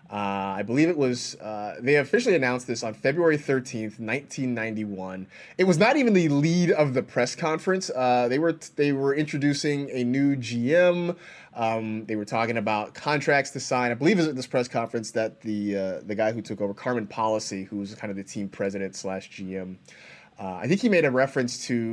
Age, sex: 20-39, male